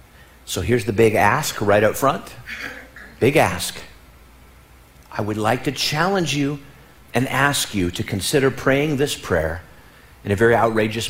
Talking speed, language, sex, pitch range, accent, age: 150 wpm, English, male, 85-125 Hz, American, 50-69